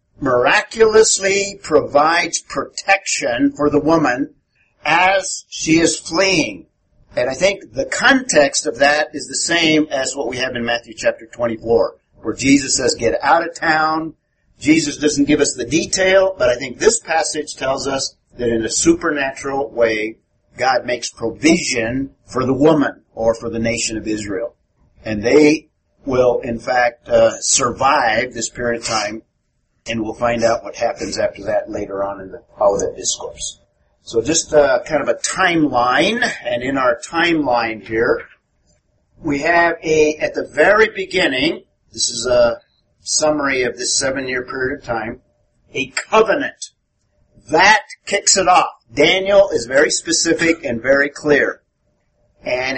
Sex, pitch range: male, 120-165 Hz